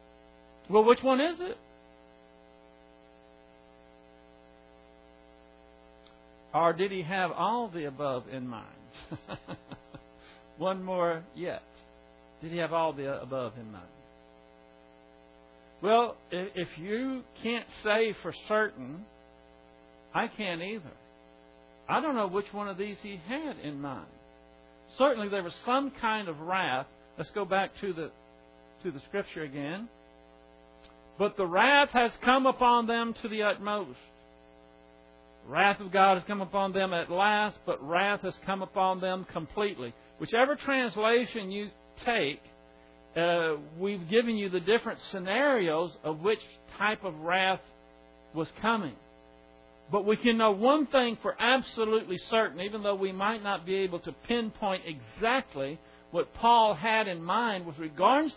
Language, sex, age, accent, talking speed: English, male, 60-79, American, 135 wpm